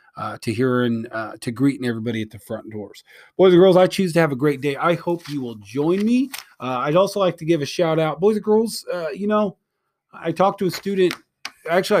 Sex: male